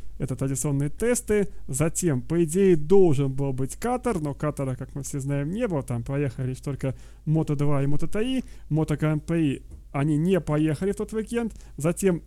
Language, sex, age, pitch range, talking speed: Russian, male, 30-49, 140-180 Hz, 165 wpm